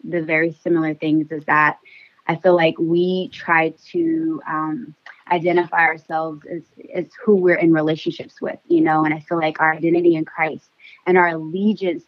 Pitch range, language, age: 160-190 Hz, English, 20-39